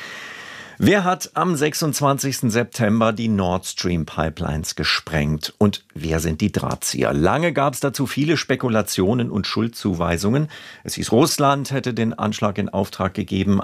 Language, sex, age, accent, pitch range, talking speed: German, male, 50-69, German, 95-135 Hz, 140 wpm